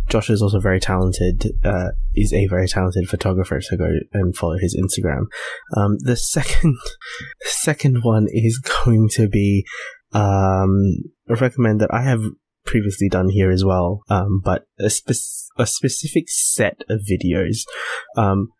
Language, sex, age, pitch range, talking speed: English, male, 20-39, 100-125 Hz, 150 wpm